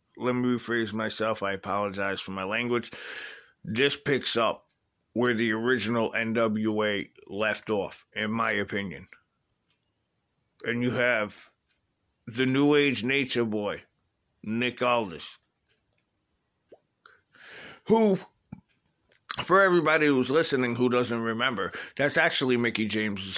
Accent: American